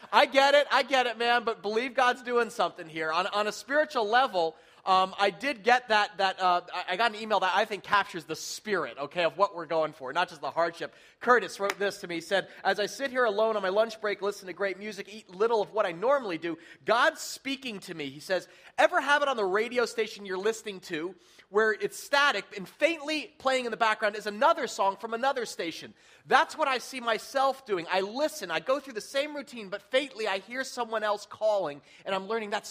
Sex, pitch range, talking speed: male, 185-240 Hz, 235 wpm